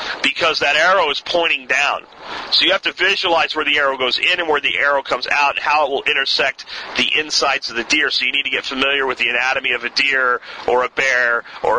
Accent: American